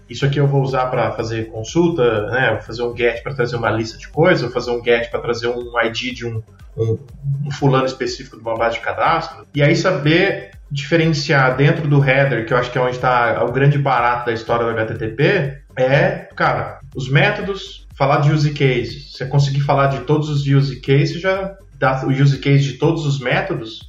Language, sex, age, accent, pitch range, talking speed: Portuguese, male, 20-39, Brazilian, 120-160 Hz, 215 wpm